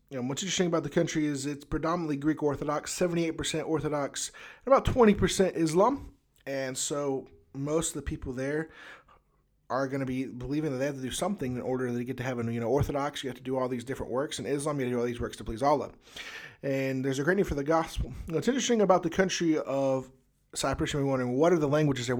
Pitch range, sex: 135-175 Hz, male